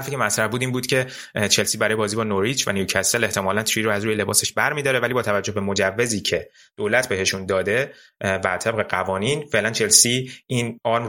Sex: male